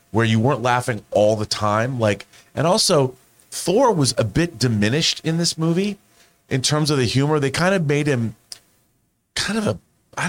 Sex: male